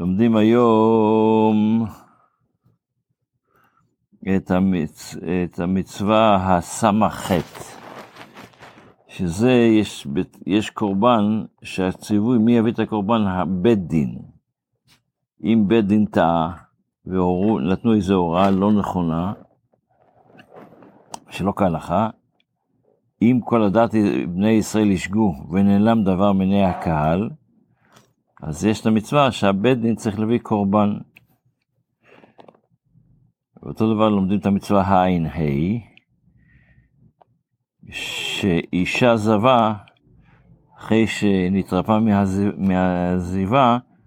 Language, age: Hebrew, 60-79